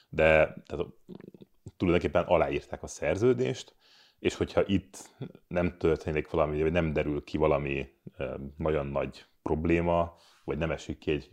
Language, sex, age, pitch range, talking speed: Hungarian, male, 30-49, 75-95 Hz, 125 wpm